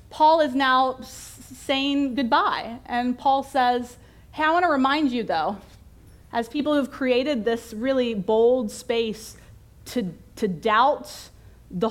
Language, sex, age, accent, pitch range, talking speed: English, female, 30-49, American, 205-265 Hz, 140 wpm